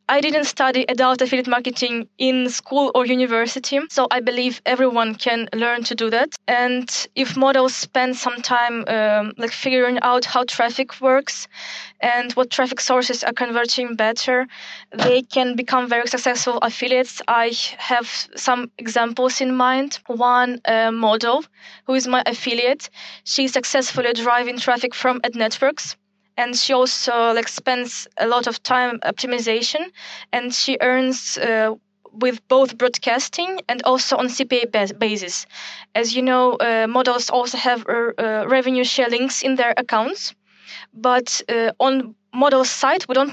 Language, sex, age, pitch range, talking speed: English, female, 20-39, 235-260 Hz, 150 wpm